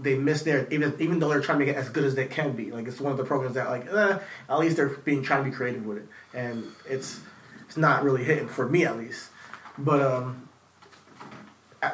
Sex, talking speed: male, 240 wpm